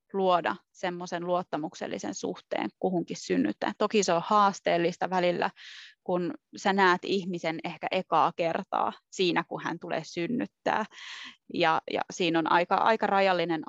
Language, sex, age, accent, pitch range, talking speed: Finnish, female, 20-39, native, 170-200 Hz, 130 wpm